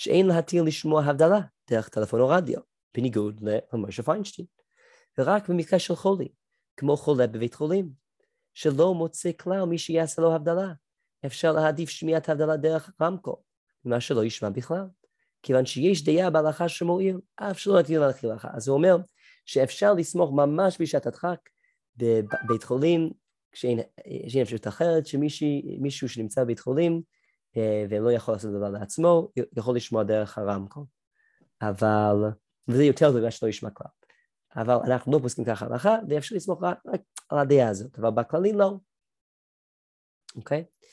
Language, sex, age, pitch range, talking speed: Hebrew, male, 30-49, 120-175 Hz, 140 wpm